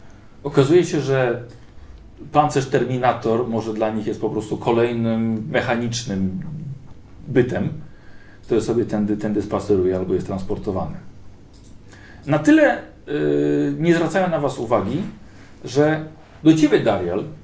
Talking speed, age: 115 wpm, 40-59